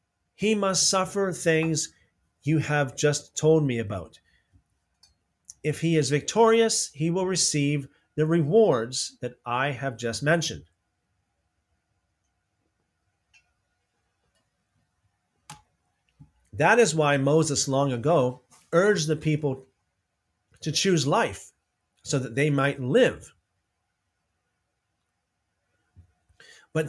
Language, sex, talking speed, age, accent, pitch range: English, male, 95 wpm, 40-59, American, 105-160 Hz